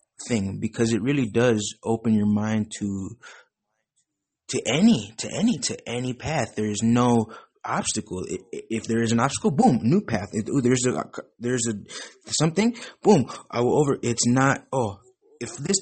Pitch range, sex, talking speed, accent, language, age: 110-140 Hz, male, 170 wpm, American, English, 20-39